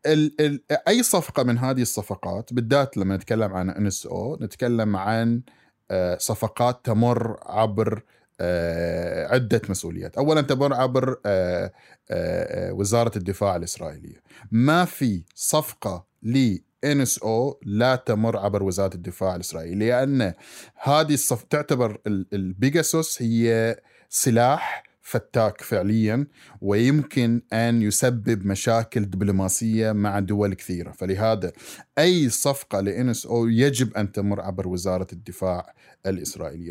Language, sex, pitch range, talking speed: Arabic, male, 100-135 Hz, 110 wpm